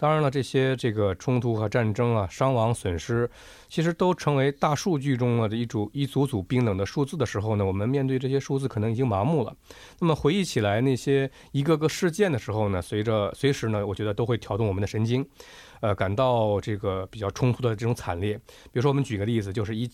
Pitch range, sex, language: 110-140 Hz, male, Korean